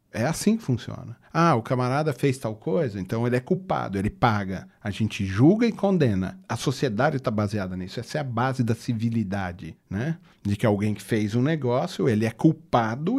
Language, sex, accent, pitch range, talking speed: Portuguese, male, Brazilian, 110-150 Hz, 195 wpm